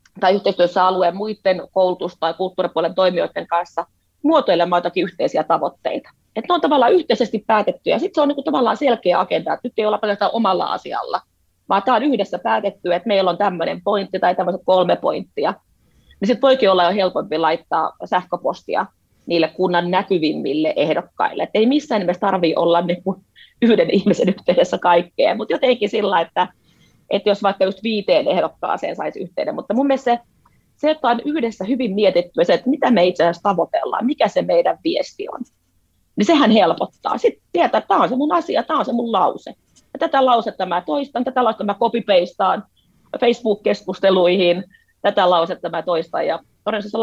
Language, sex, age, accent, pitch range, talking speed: Finnish, female, 30-49, native, 175-235 Hz, 170 wpm